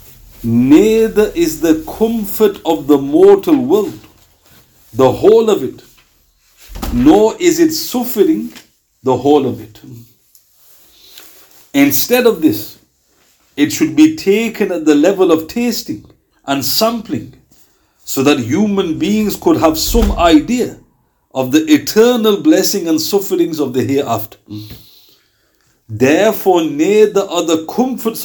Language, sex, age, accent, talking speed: English, male, 50-69, Indian, 120 wpm